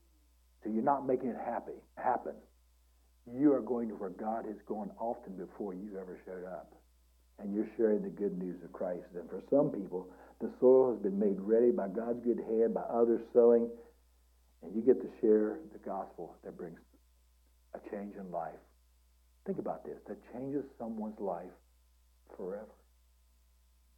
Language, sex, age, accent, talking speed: English, male, 60-79, American, 170 wpm